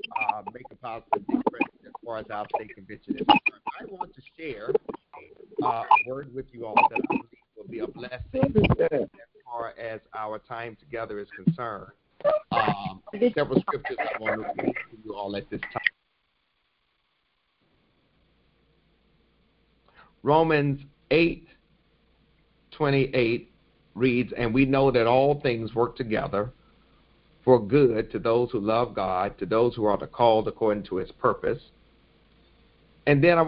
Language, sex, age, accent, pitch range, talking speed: English, male, 50-69, American, 115-150 Hz, 145 wpm